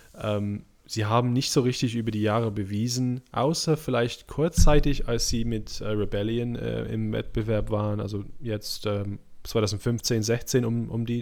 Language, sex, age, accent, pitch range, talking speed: German, male, 20-39, German, 100-115 Hz, 155 wpm